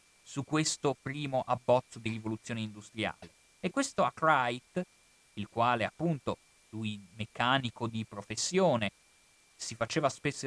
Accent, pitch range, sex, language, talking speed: native, 110-170 Hz, male, Italian, 115 wpm